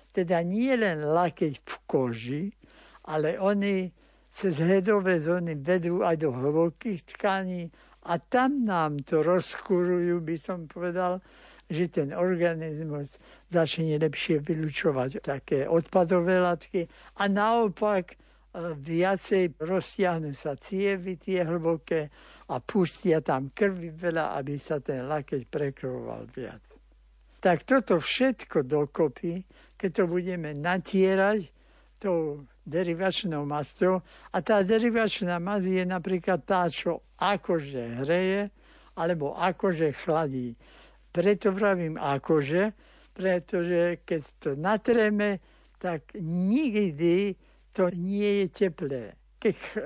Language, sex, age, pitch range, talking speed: Slovak, male, 60-79, 160-195 Hz, 110 wpm